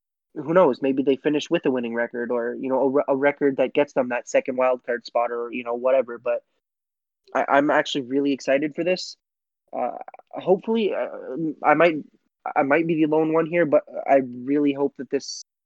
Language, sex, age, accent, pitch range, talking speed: English, male, 20-39, American, 130-155 Hz, 200 wpm